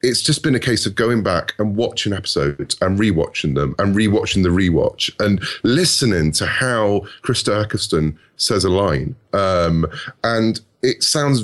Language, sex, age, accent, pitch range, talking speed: English, male, 30-49, British, 85-110 Hz, 165 wpm